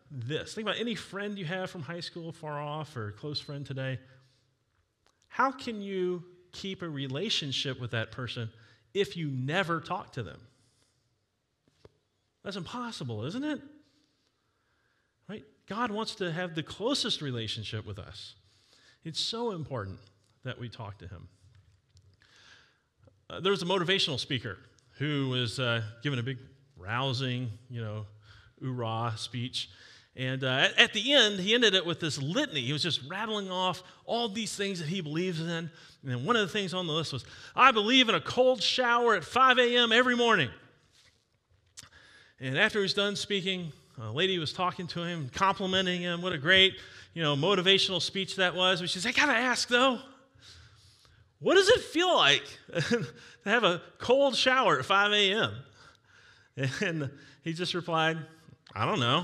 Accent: American